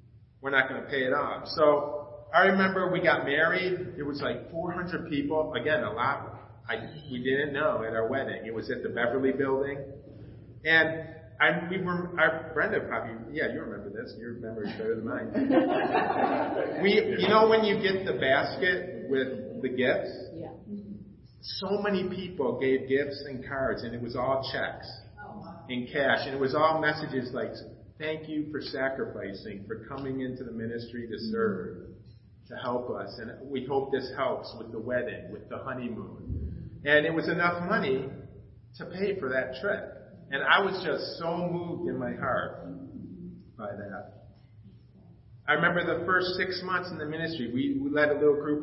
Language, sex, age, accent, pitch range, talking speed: English, male, 40-59, American, 120-165 Hz, 180 wpm